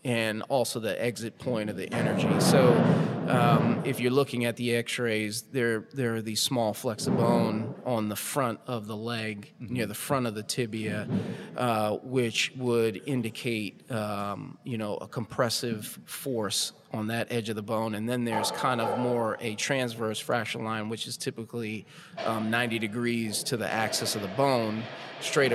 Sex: male